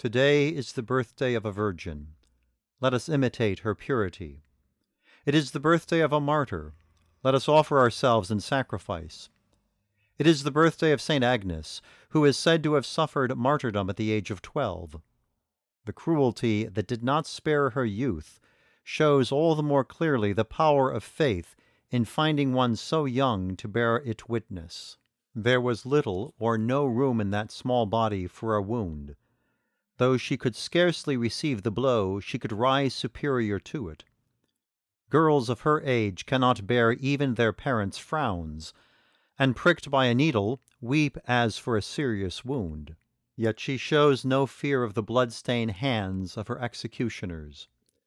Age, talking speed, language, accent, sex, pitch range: 50-69, 160 wpm, English, American, male, 105-140 Hz